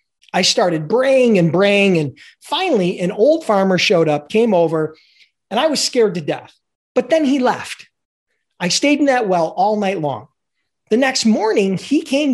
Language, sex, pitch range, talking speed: English, male, 175-255 Hz, 180 wpm